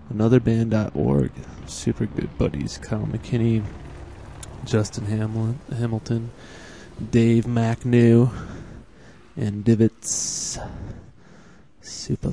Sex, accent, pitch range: male, American, 110-135 Hz